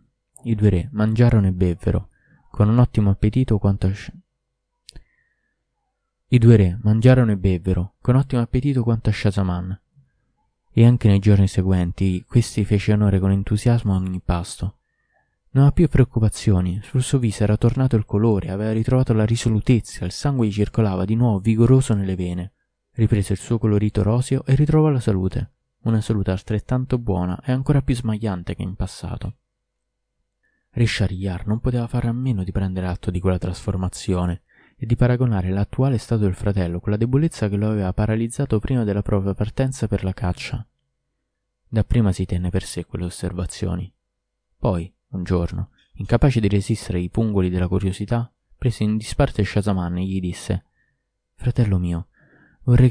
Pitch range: 95-120 Hz